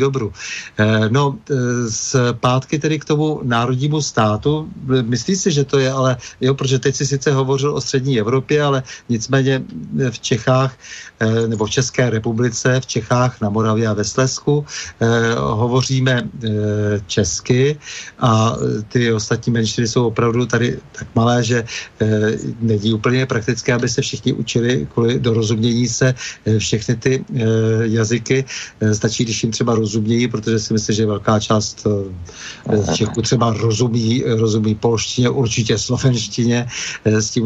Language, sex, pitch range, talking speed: Czech, male, 115-135 Hz, 135 wpm